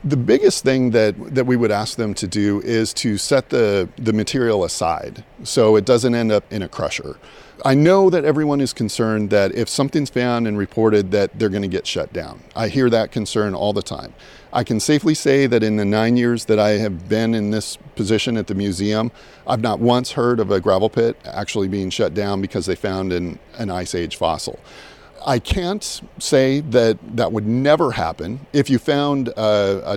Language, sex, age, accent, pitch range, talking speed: English, male, 40-59, American, 105-130 Hz, 210 wpm